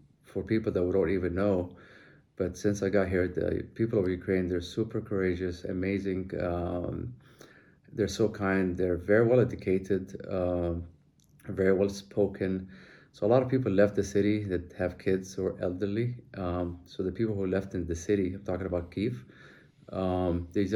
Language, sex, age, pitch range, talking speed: English, male, 30-49, 90-100 Hz, 175 wpm